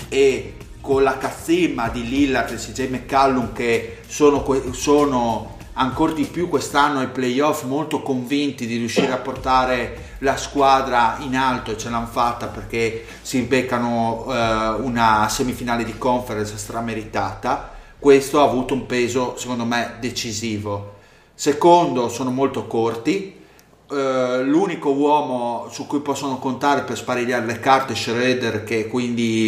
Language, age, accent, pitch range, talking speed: Italian, 30-49, native, 115-135 Hz, 135 wpm